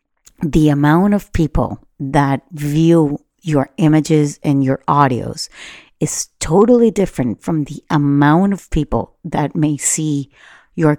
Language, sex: English, female